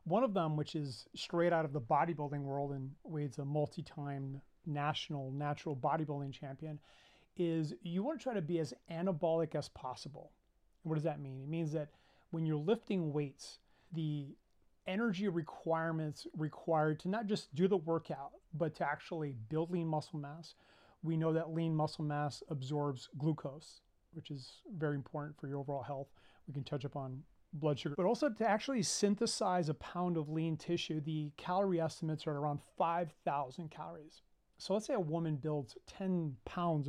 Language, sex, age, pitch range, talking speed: English, male, 30-49, 145-170 Hz, 175 wpm